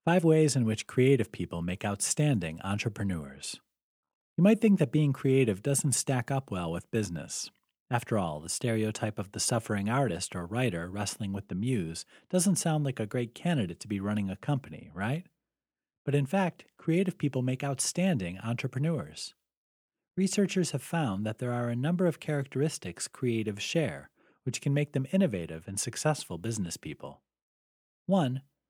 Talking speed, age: 160 wpm, 40-59